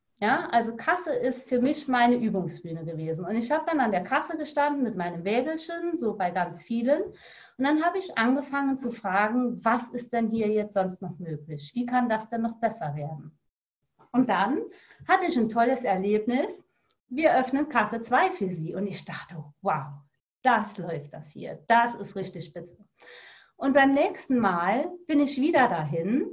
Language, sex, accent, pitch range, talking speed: German, female, German, 190-270 Hz, 180 wpm